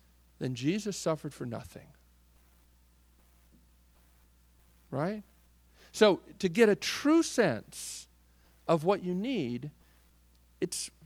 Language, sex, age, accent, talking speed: English, male, 50-69, American, 90 wpm